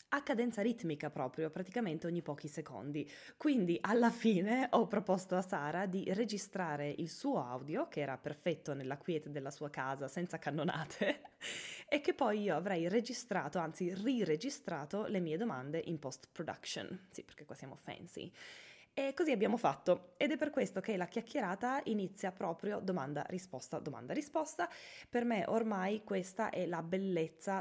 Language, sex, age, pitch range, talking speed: Italian, female, 20-39, 160-230 Hz, 155 wpm